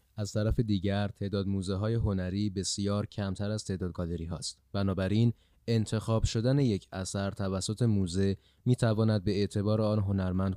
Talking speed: 150 wpm